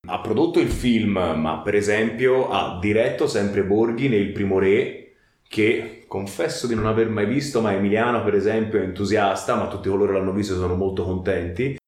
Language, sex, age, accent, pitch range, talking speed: Italian, male, 30-49, native, 100-120 Hz, 175 wpm